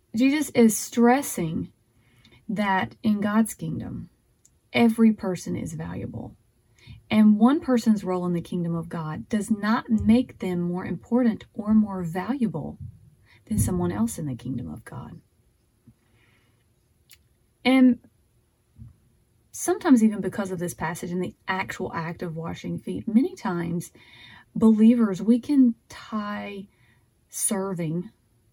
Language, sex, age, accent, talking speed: English, female, 30-49, American, 120 wpm